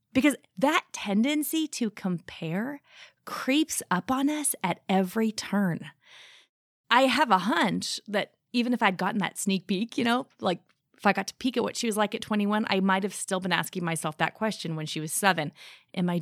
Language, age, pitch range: English, 30-49, 180-240 Hz